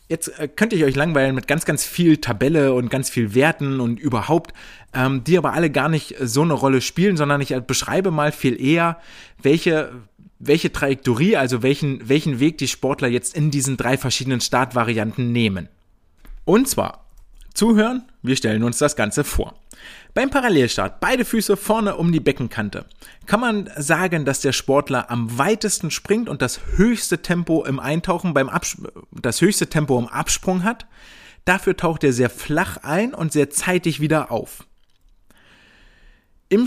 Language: German